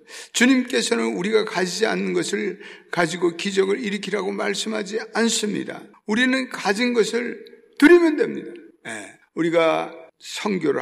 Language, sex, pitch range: Korean, male, 145-225 Hz